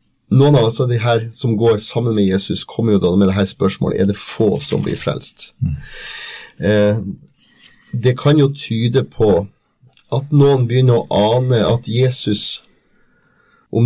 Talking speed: 160 wpm